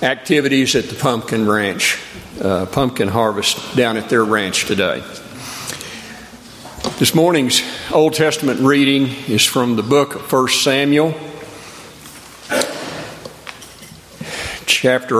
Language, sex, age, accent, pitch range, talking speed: English, male, 50-69, American, 110-135 Hz, 105 wpm